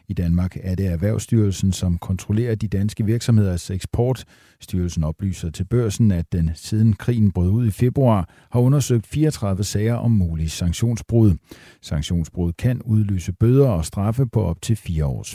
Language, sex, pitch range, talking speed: Danish, male, 90-115 Hz, 160 wpm